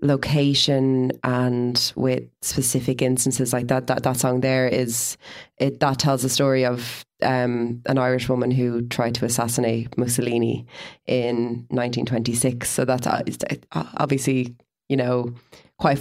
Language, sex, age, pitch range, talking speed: English, female, 20-39, 125-145 Hz, 140 wpm